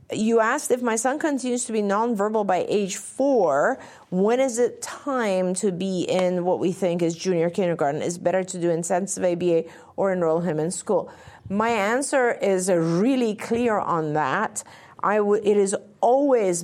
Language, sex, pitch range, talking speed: English, female, 175-210 Hz, 165 wpm